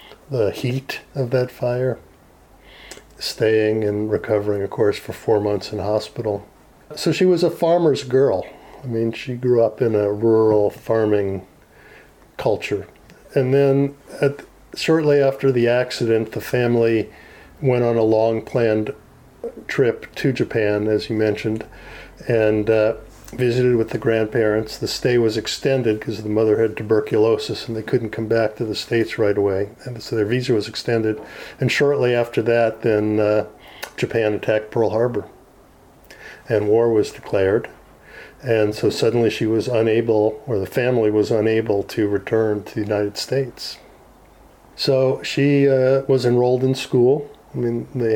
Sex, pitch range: male, 110-125 Hz